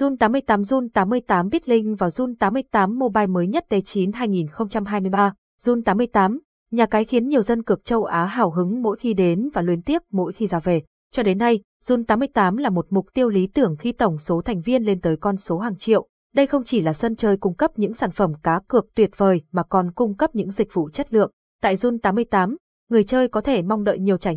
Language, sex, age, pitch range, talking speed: Vietnamese, female, 20-39, 190-240 Hz, 210 wpm